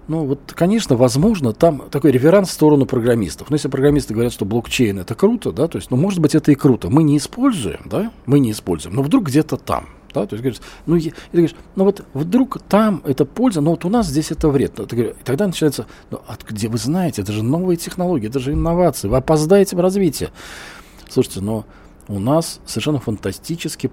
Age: 40-59